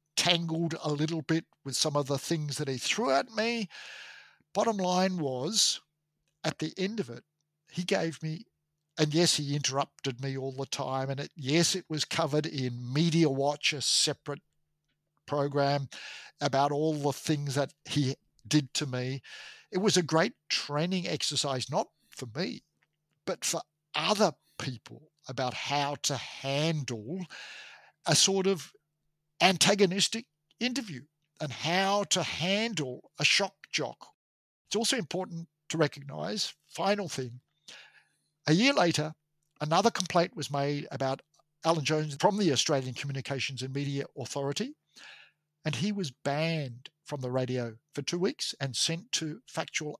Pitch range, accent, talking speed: 140-170 Hz, Australian, 145 wpm